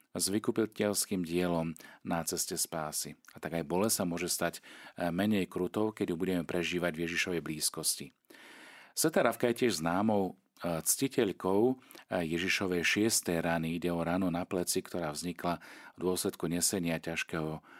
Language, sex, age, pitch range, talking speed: Slovak, male, 40-59, 90-120 Hz, 140 wpm